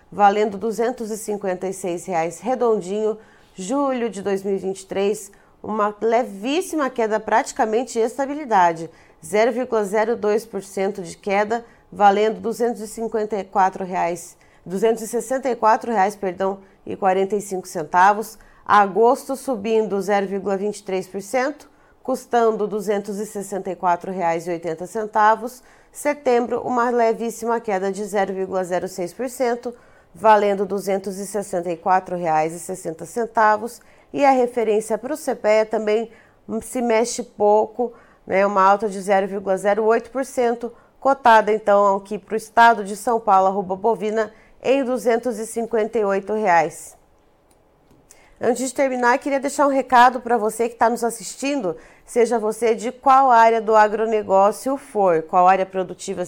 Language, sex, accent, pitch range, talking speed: Portuguese, female, Brazilian, 195-235 Hz, 95 wpm